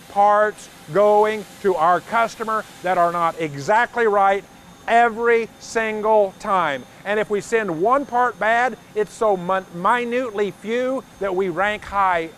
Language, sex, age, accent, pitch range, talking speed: English, male, 50-69, American, 185-230 Hz, 135 wpm